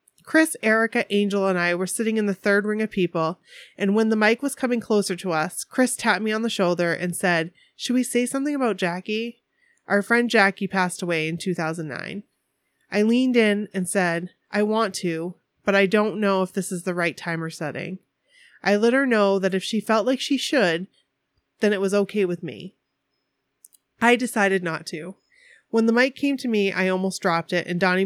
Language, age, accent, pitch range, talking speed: English, 30-49, American, 175-225 Hz, 205 wpm